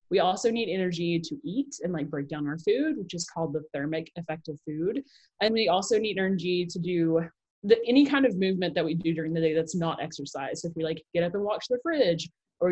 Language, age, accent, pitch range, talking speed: English, 20-39, American, 155-205 Hz, 250 wpm